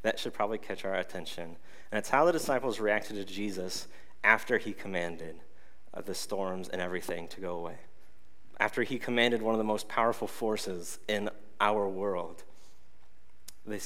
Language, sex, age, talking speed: English, male, 30-49, 165 wpm